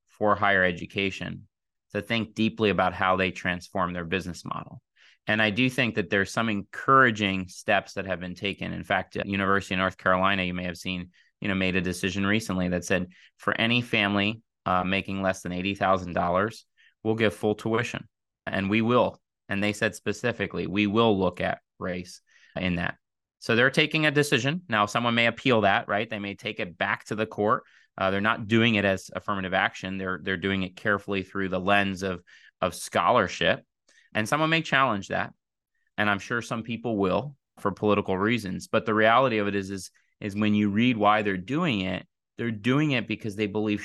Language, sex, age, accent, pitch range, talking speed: English, male, 30-49, American, 95-110 Hz, 200 wpm